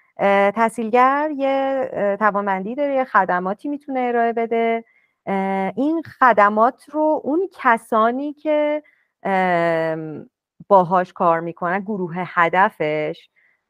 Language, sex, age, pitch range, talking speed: Persian, female, 30-49, 175-245 Hz, 90 wpm